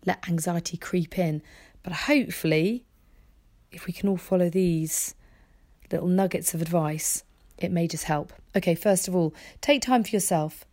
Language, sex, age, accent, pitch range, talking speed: English, female, 40-59, British, 165-195 Hz, 155 wpm